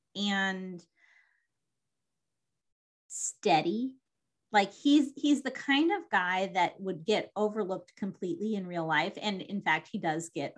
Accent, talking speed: American, 130 wpm